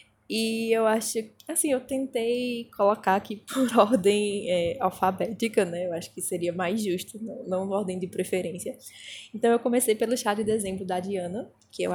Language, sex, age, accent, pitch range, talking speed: Portuguese, female, 10-29, Brazilian, 180-225 Hz, 175 wpm